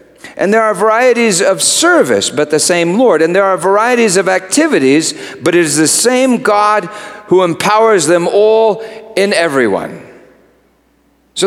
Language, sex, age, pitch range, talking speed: English, male, 40-59, 155-225 Hz, 150 wpm